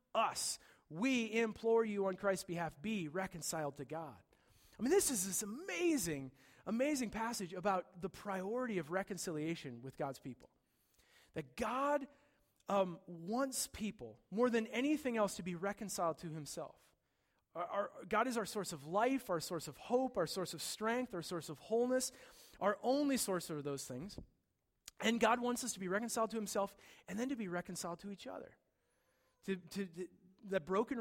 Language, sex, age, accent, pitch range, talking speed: English, male, 30-49, American, 155-215 Hz, 165 wpm